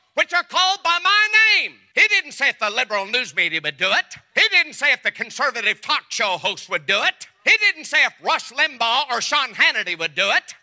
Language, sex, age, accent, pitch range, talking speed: English, male, 50-69, American, 250-340 Hz, 230 wpm